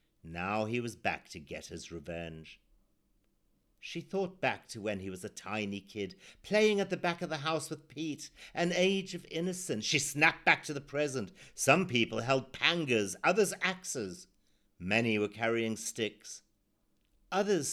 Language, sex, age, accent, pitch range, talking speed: English, male, 50-69, British, 100-165 Hz, 165 wpm